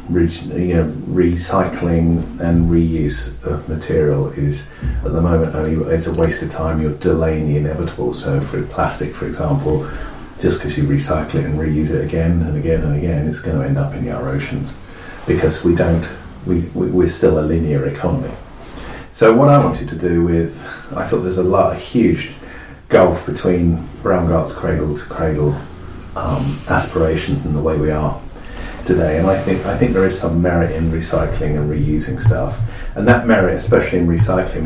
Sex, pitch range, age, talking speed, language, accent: male, 80-90 Hz, 40-59, 185 wpm, English, British